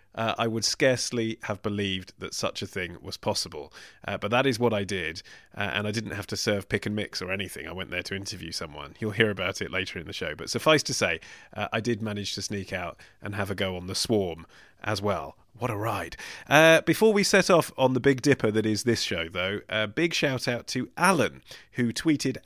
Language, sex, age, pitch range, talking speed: English, male, 30-49, 100-125 Hz, 240 wpm